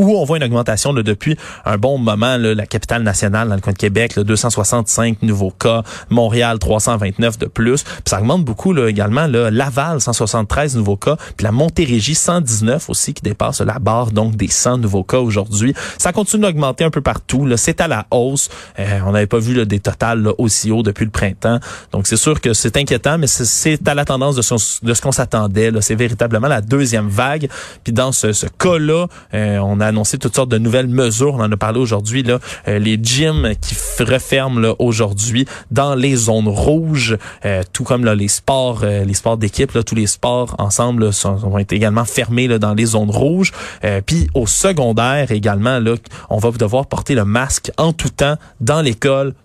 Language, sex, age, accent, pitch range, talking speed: French, male, 20-39, Canadian, 105-135 Hz, 200 wpm